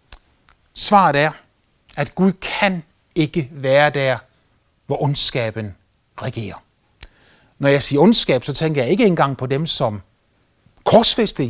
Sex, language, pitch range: male, Danish, 115-185 Hz